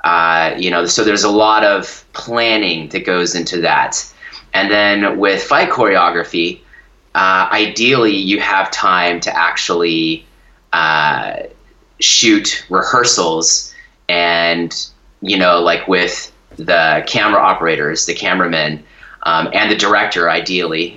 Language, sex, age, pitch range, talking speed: English, male, 30-49, 80-100 Hz, 125 wpm